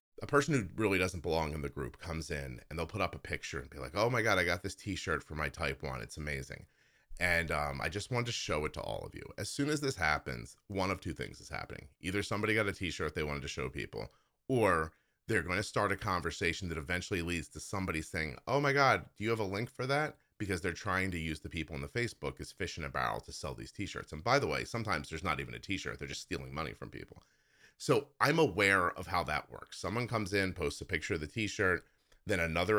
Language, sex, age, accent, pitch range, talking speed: English, male, 30-49, American, 80-105 Hz, 260 wpm